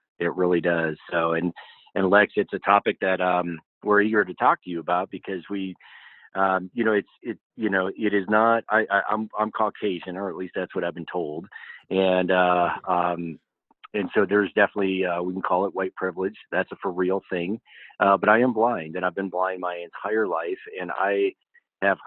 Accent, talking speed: American, 210 wpm